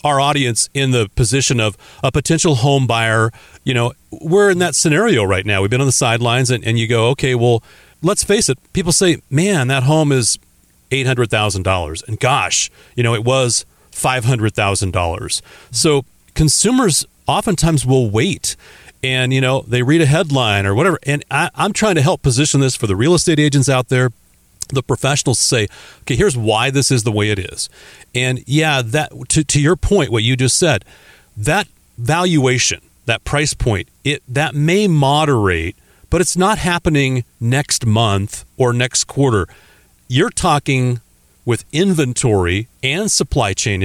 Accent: American